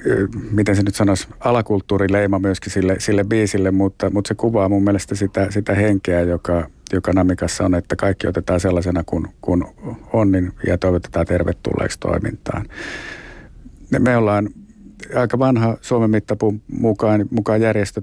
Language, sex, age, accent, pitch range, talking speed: Finnish, male, 50-69, native, 95-105 Hz, 145 wpm